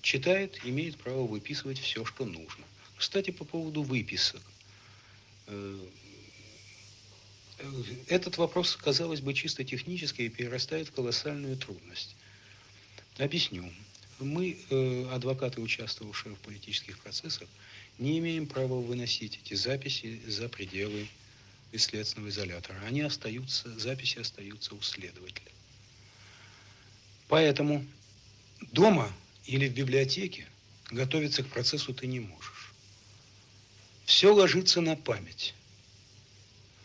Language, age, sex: Russian, 60-79, male